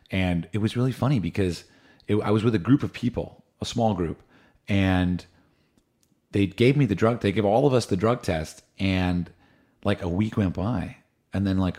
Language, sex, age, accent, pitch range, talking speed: English, male, 30-49, American, 85-110 Hz, 200 wpm